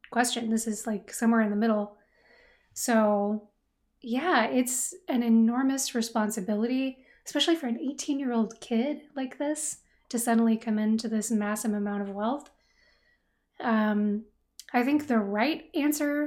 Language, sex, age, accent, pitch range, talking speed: English, female, 20-39, American, 220-255 Hz, 135 wpm